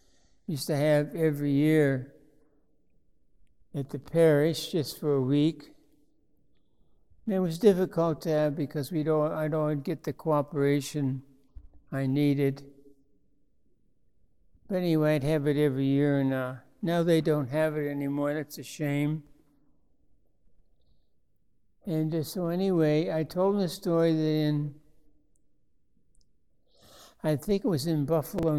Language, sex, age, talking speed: English, male, 60-79, 125 wpm